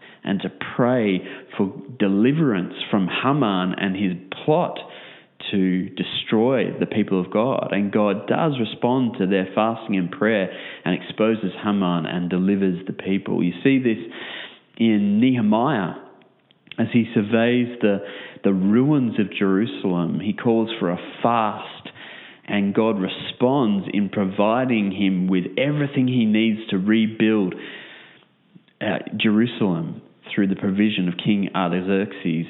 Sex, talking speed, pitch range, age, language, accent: male, 125 wpm, 95-115 Hz, 30-49, English, Australian